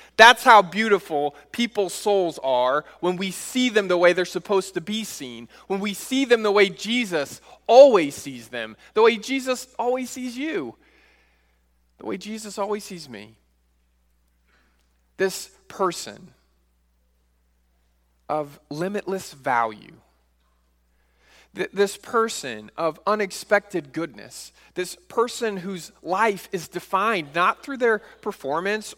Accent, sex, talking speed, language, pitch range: American, male, 120 wpm, English, 145-220 Hz